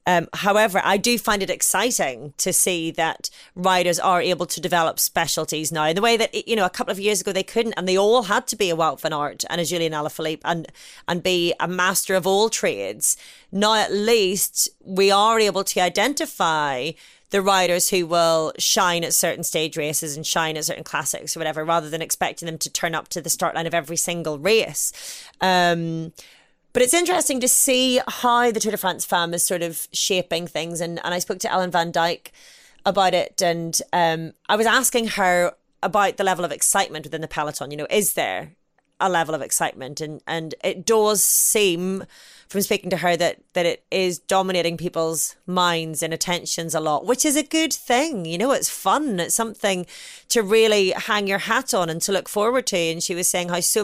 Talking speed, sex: 210 wpm, female